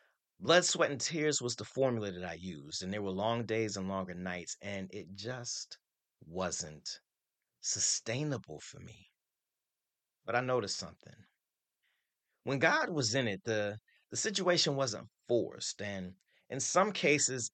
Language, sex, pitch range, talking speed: English, male, 100-150 Hz, 145 wpm